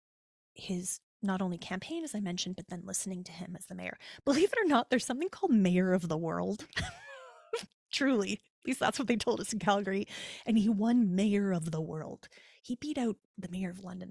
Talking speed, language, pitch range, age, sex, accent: 215 wpm, English, 185-245 Hz, 30-49, female, American